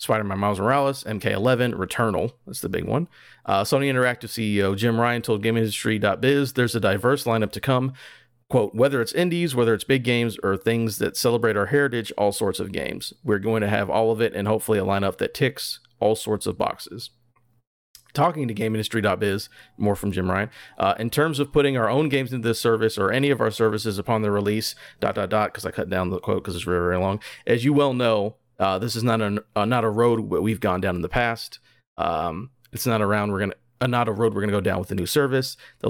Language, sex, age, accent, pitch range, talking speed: English, male, 40-59, American, 100-120 Hz, 225 wpm